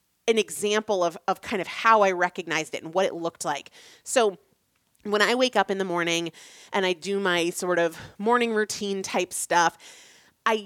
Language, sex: English, female